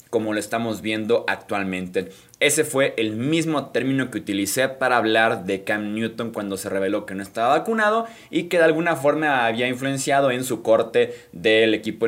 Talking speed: 180 wpm